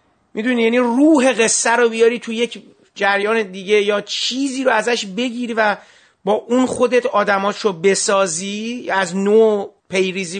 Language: Persian